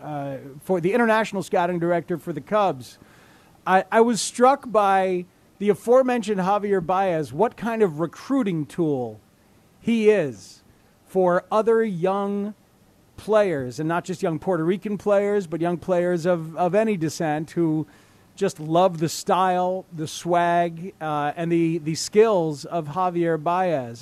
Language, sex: English, male